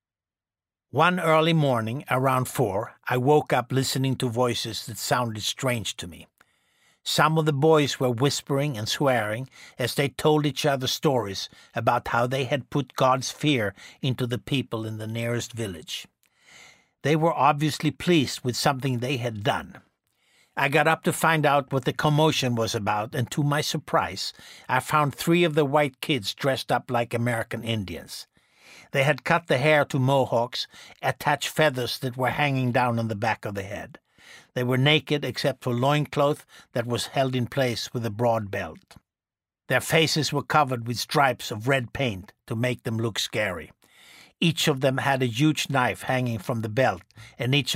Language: English